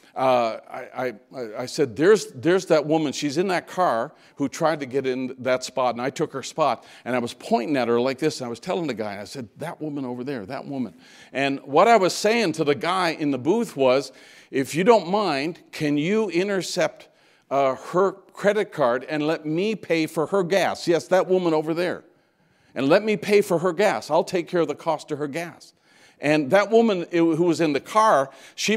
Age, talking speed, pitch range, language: 50-69, 225 wpm, 135-180 Hz, English